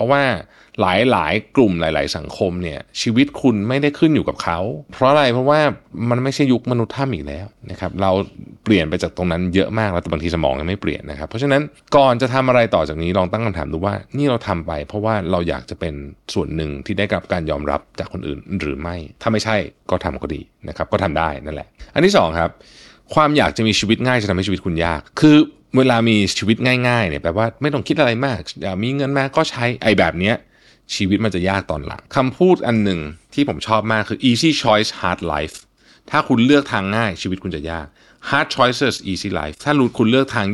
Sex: male